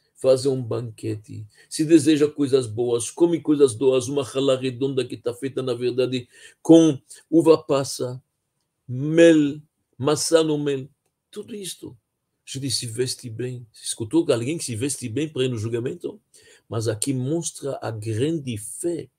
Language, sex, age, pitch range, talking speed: Portuguese, male, 50-69, 120-160 Hz, 145 wpm